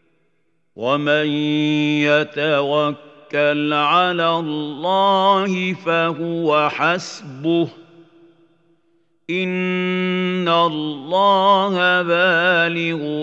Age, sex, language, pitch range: 50-69, male, Arabic, 150-180 Hz